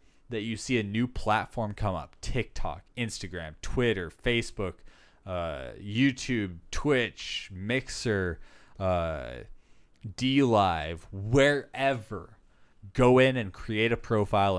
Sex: male